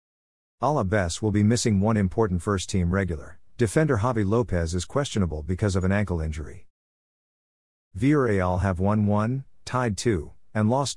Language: English